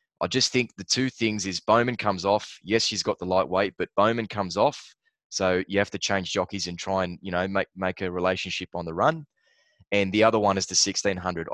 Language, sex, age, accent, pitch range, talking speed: English, male, 20-39, Australian, 90-105 Hz, 230 wpm